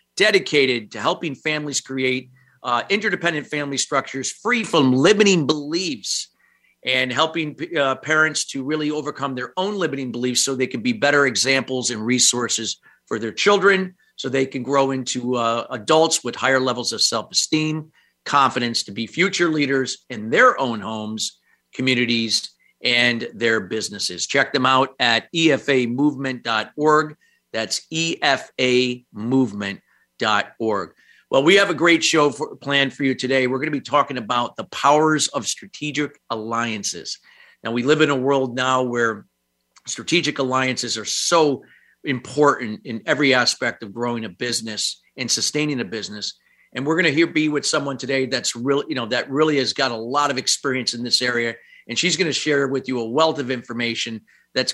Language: English